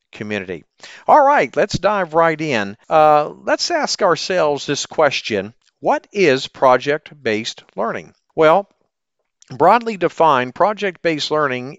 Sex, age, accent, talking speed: male, 50-69, American, 110 wpm